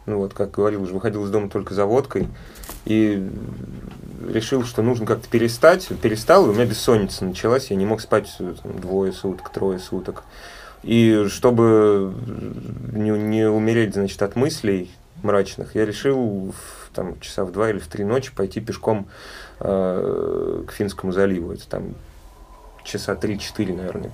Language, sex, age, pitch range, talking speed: Russian, male, 30-49, 95-120 Hz, 145 wpm